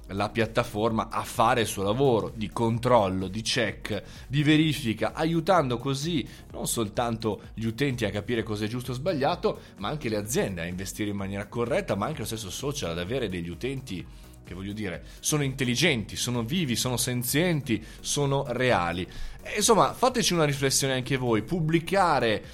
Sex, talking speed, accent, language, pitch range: male, 170 wpm, native, Italian, 110-160 Hz